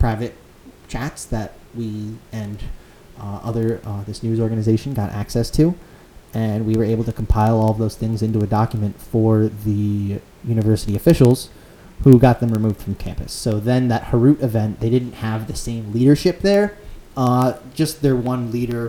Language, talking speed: English, 170 wpm